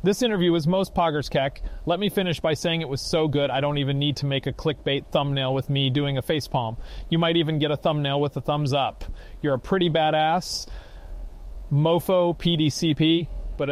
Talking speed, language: 200 wpm, English